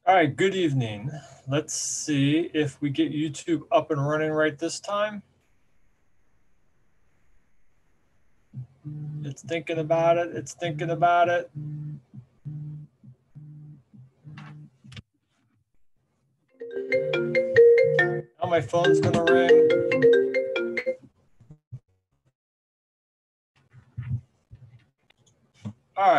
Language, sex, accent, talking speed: English, male, American, 70 wpm